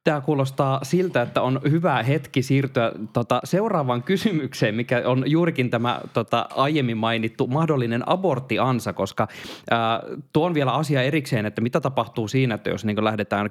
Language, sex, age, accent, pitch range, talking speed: Finnish, male, 20-39, native, 105-140 Hz, 135 wpm